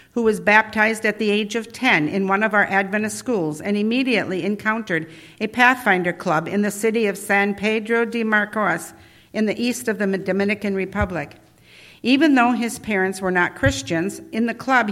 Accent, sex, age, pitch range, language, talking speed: American, female, 60-79, 185-230 Hz, English, 180 wpm